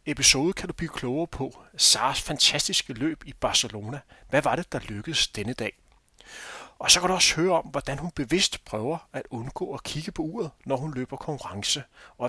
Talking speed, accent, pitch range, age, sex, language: 195 wpm, native, 120-155 Hz, 30-49, male, Danish